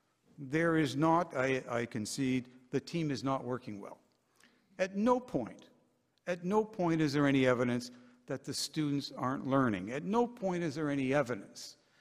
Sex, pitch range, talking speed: male, 120-155 Hz, 170 wpm